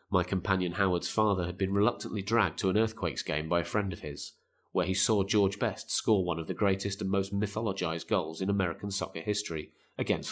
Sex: male